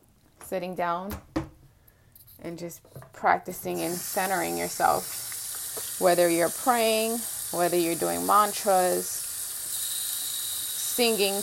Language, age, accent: English, 20-39, American